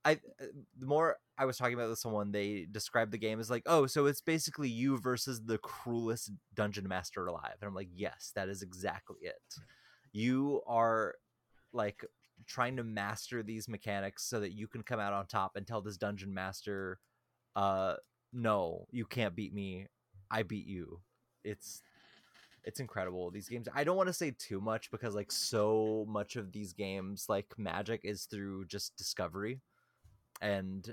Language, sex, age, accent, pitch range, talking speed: English, male, 20-39, American, 95-115 Hz, 175 wpm